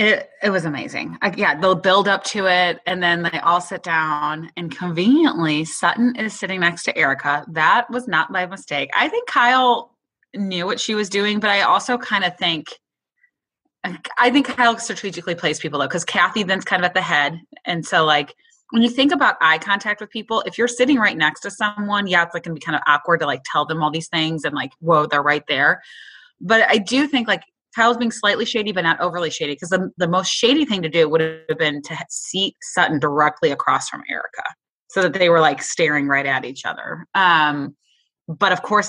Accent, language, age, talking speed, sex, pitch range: American, English, 20-39, 220 wpm, female, 155-200 Hz